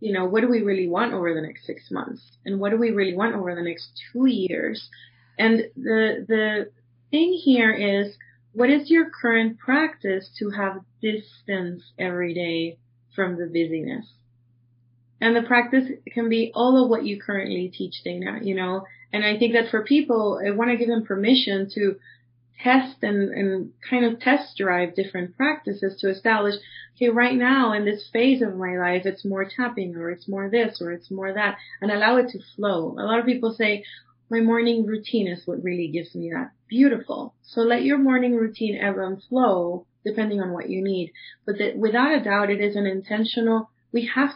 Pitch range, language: 180-230 Hz, English